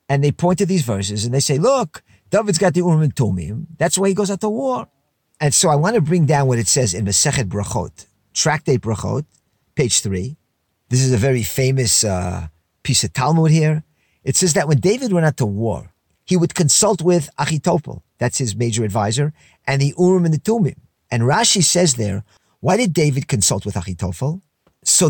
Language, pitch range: English, 130-175 Hz